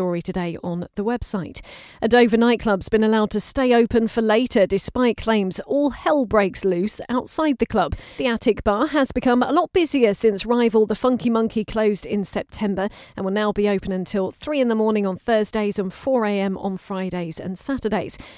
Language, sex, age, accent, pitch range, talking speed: English, female, 40-59, British, 195-240 Hz, 190 wpm